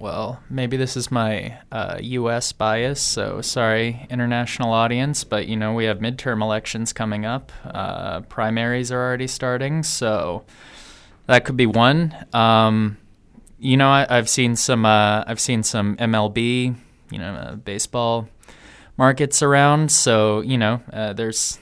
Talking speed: 150 wpm